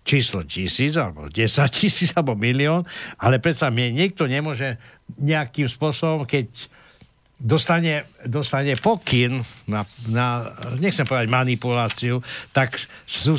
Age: 60-79